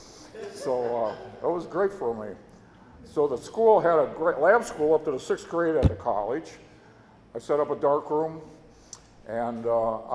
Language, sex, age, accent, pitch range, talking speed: English, male, 60-79, American, 150-200 Hz, 185 wpm